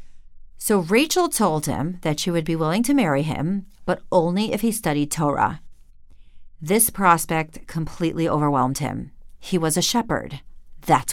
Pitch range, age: 145-195 Hz, 40-59